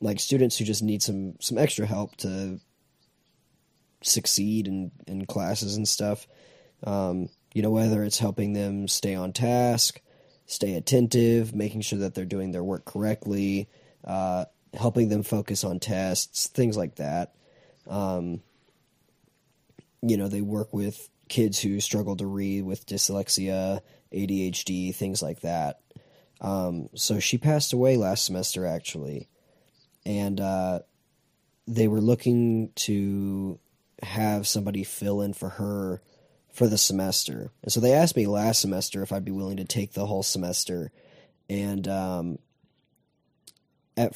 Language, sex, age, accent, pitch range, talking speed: English, male, 20-39, American, 95-115 Hz, 140 wpm